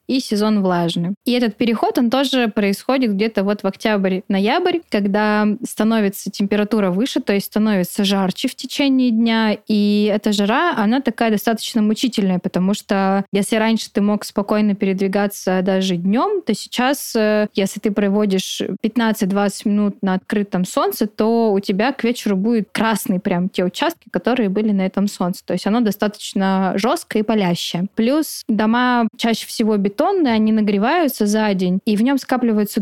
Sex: female